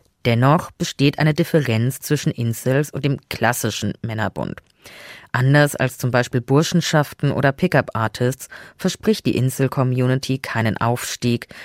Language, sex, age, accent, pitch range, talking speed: German, female, 20-39, German, 120-150 Hz, 120 wpm